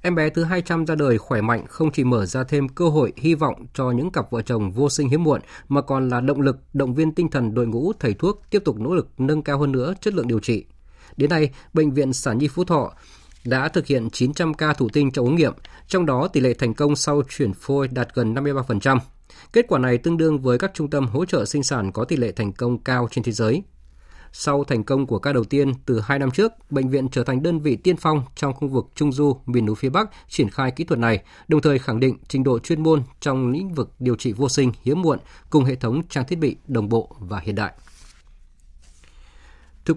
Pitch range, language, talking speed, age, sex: 120-155 Hz, Vietnamese, 250 wpm, 20-39, male